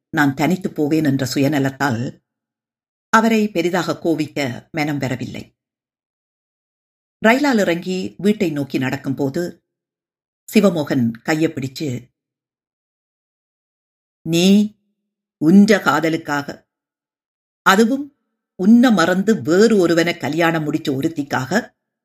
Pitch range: 140-215 Hz